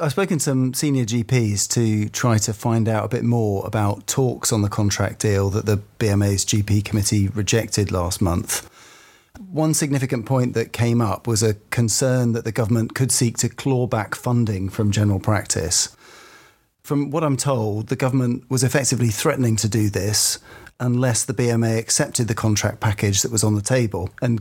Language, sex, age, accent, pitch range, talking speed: English, male, 40-59, British, 105-130 Hz, 180 wpm